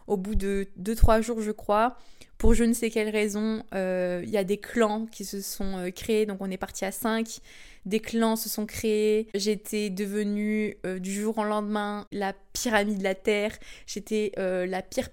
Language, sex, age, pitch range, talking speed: French, female, 20-39, 195-220 Hz, 200 wpm